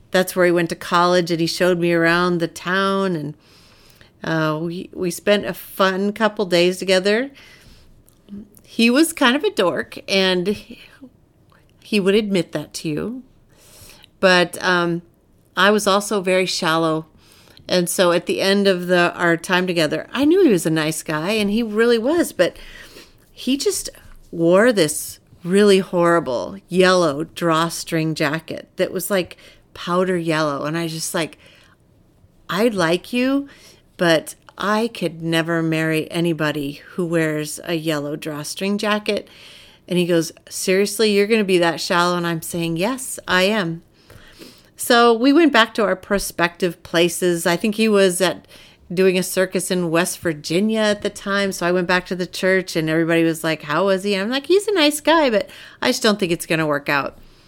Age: 40-59